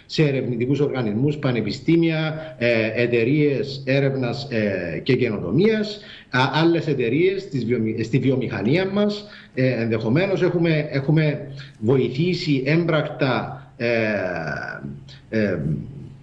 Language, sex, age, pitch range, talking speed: Greek, male, 50-69, 130-160 Hz, 80 wpm